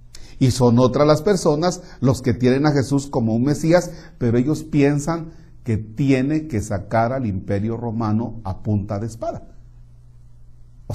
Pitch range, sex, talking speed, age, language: 105-135 Hz, male, 155 wpm, 40-59, Spanish